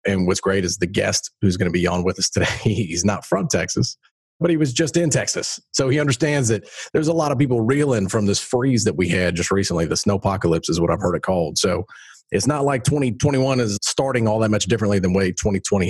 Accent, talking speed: American, 245 wpm